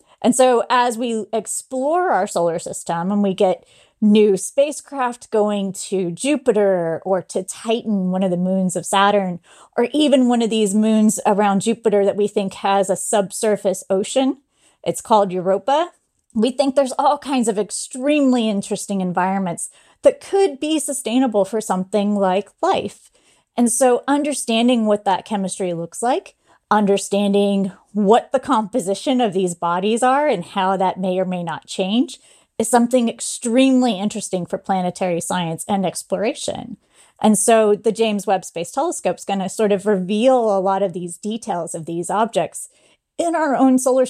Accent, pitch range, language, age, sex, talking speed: American, 190-240 Hz, English, 30-49, female, 160 wpm